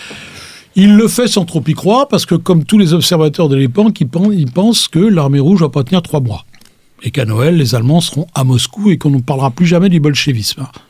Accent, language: French, French